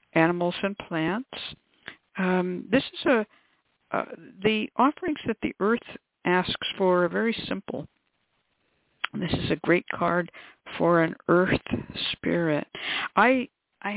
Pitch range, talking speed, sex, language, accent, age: 165-210 Hz, 125 wpm, female, English, American, 60-79